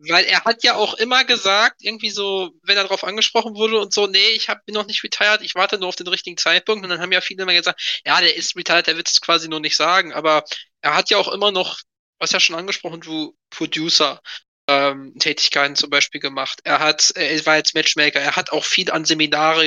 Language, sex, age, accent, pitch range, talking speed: German, male, 20-39, German, 155-200 Hz, 230 wpm